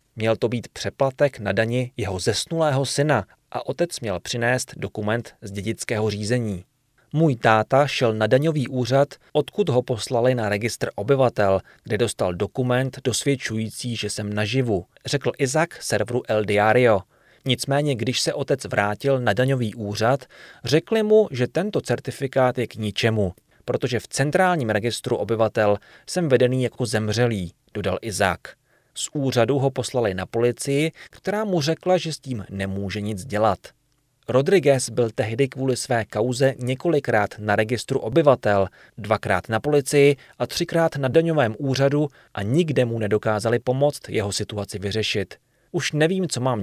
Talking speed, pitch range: 145 wpm, 105-140 Hz